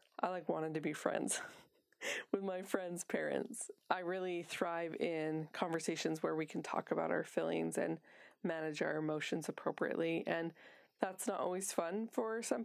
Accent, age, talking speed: American, 20-39, 160 wpm